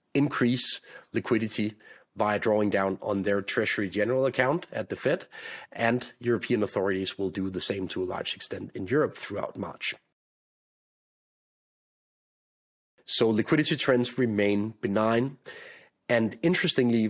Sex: male